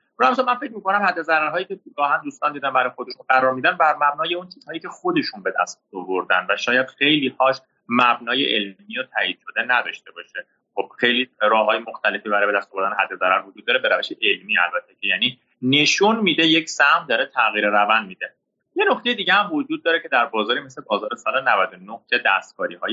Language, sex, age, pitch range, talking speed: Persian, male, 30-49, 115-165 Hz, 195 wpm